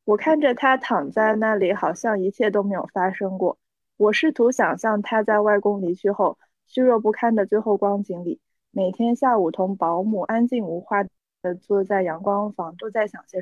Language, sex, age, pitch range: Chinese, female, 20-39, 185-230 Hz